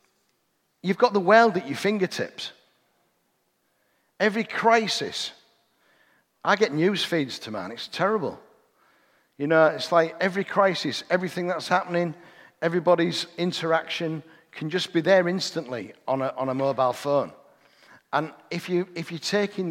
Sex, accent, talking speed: male, British, 135 wpm